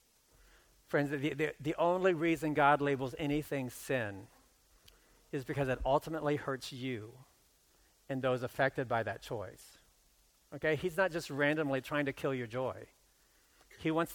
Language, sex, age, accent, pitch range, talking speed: English, male, 50-69, American, 120-155 Hz, 145 wpm